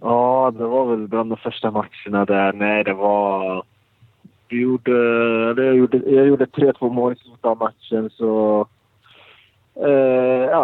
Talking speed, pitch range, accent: 120 wpm, 95-115 Hz, Norwegian